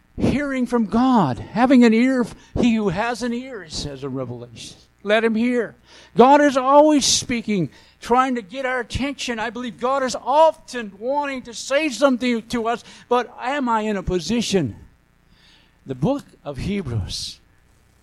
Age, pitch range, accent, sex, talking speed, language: 60-79, 150-250 Hz, American, male, 160 wpm, English